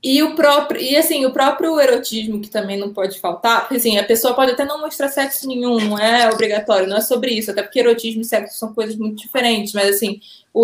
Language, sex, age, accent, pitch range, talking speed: Portuguese, female, 20-39, Brazilian, 215-280 Hz, 235 wpm